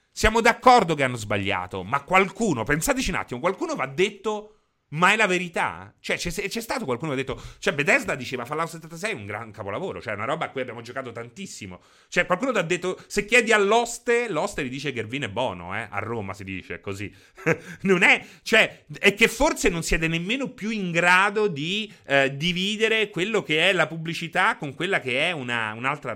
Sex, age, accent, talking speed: male, 30-49, native, 210 wpm